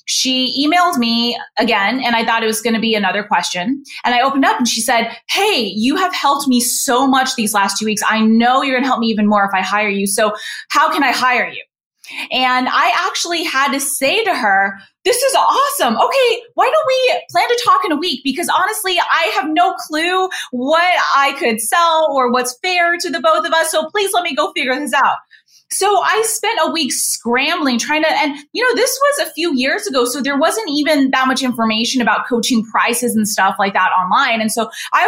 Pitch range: 220-320 Hz